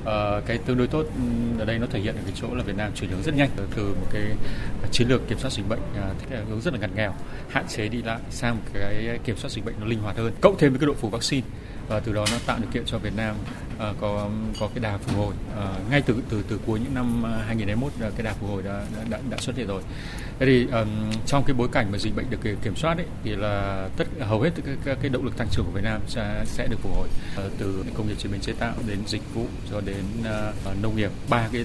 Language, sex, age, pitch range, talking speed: Vietnamese, male, 20-39, 100-115 Hz, 275 wpm